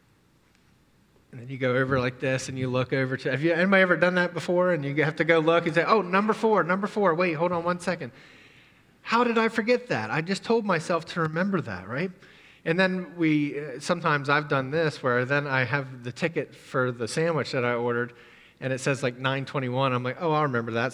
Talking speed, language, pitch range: 225 wpm, English, 130-175 Hz